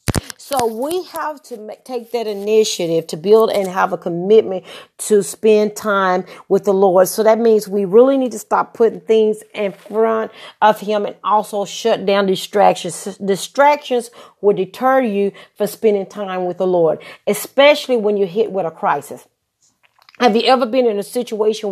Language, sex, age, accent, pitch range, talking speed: English, female, 40-59, American, 200-235 Hz, 175 wpm